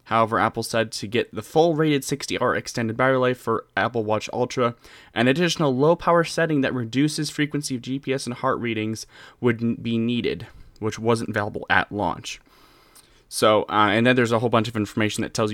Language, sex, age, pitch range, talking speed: English, male, 10-29, 100-120 Hz, 195 wpm